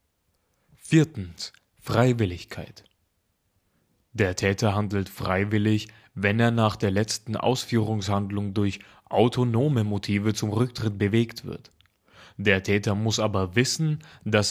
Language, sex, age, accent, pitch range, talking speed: German, male, 20-39, German, 100-115 Hz, 105 wpm